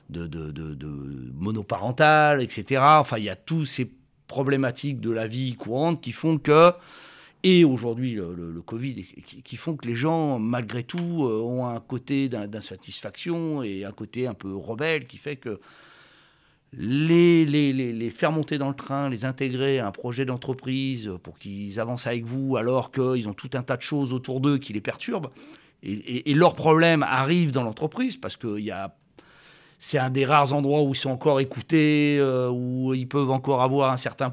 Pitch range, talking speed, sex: 120-150 Hz, 195 wpm, male